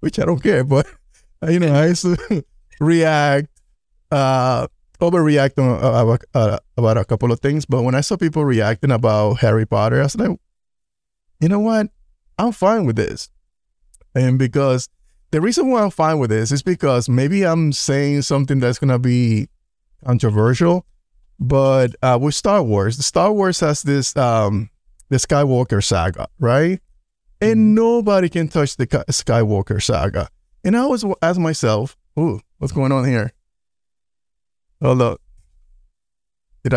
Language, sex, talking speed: English, male, 150 wpm